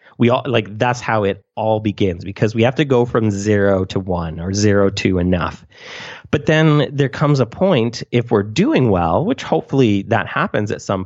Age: 30-49